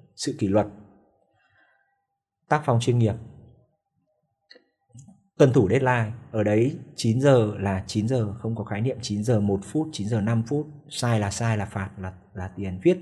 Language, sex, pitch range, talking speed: Vietnamese, male, 105-135 Hz, 175 wpm